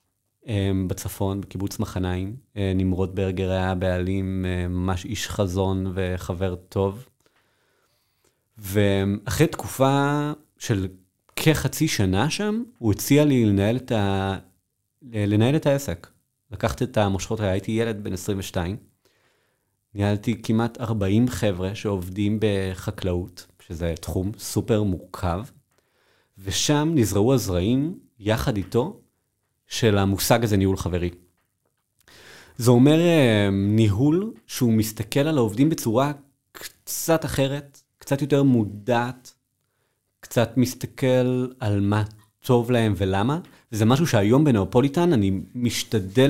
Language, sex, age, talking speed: Hebrew, male, 30-49, 105 wpm